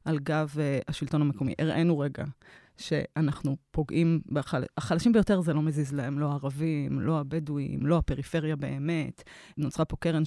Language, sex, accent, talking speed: Hebrew, female, native, 150 wpm